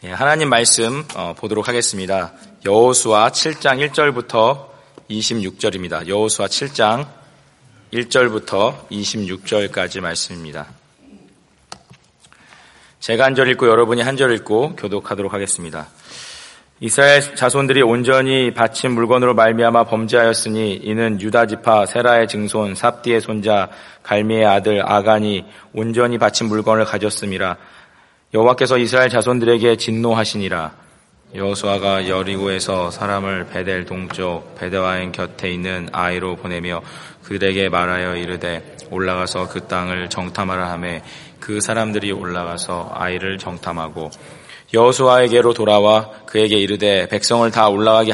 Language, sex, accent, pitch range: Korean, male, native, 95-115 Hz